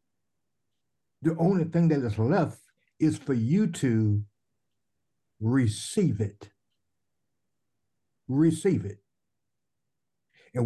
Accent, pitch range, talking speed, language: American, 110-150 Hz, 85 wpm, English